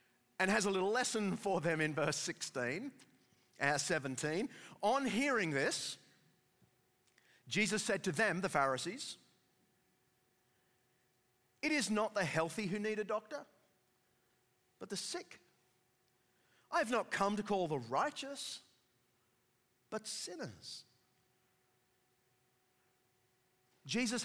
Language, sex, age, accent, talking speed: English, male, 40-59, Australian, 110 wpm